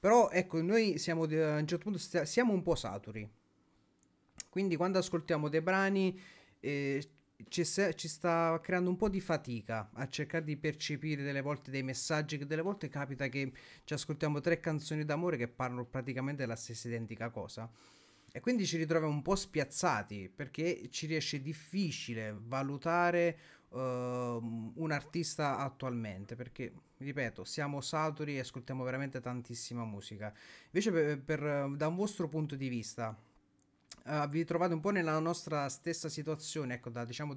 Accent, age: native, 30-49